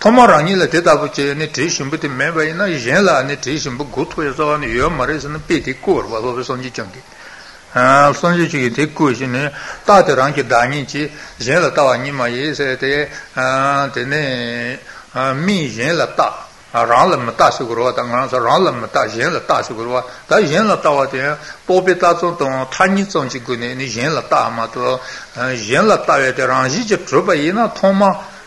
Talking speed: 35 wpm